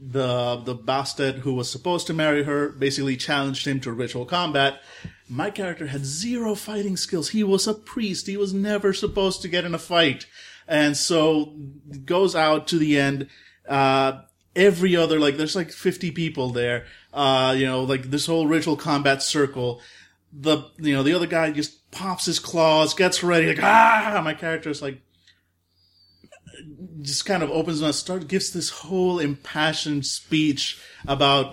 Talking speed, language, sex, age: 165 wpm, English, male, 30-49